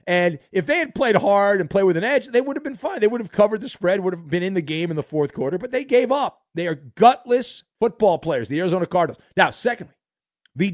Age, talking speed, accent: 50-69, 265 wpm, American